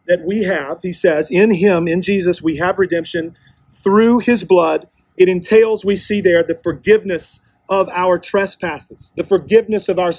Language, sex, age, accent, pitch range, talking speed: English, male, 40-59, American, 165-200 Hz, 170 wpm